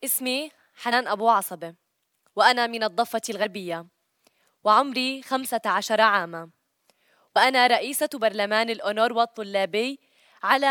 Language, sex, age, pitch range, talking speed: Arabic, female, 20-39, 210-255 Hz, 95 wpm